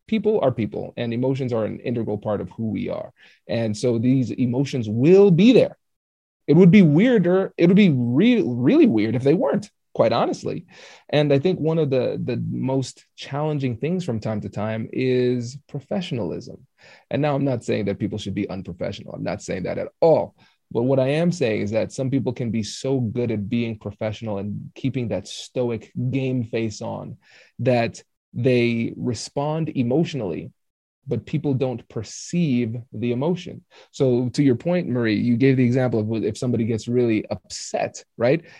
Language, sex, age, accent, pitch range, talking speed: English, male, 30-49, American, 115-145 Hz, 180 wpm